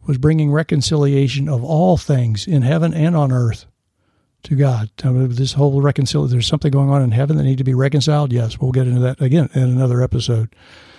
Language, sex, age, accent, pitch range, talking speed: English, male, 60-79, American, 125-155 Hz, 195 wpm